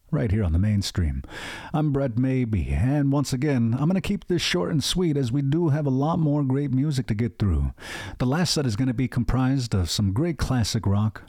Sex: male